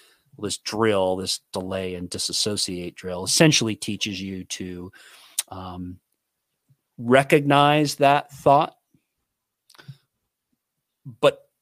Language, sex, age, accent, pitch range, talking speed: English, male, 40-59, American, 100-130 Hz, 85 wpm